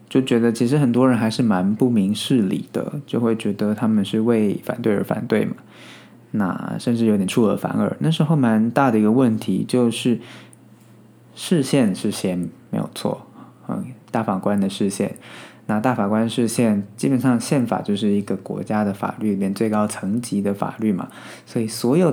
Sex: male